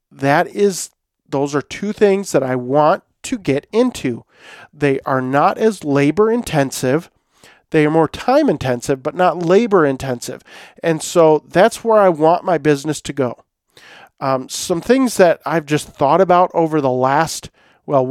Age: 40-59